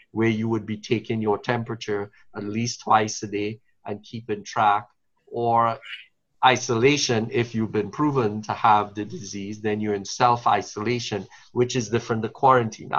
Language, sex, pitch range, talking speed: English, male, 105-120 Hz, 160 wpm